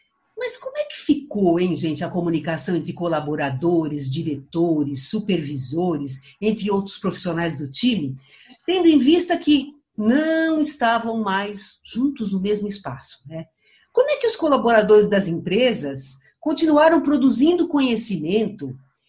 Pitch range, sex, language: 175-285 Hz, female, Portuguese